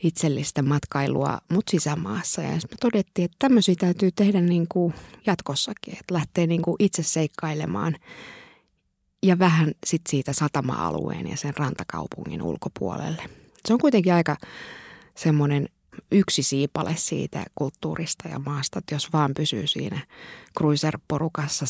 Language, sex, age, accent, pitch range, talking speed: Finnish, female, 20-39, native, 140-175 Hz, 130 wpm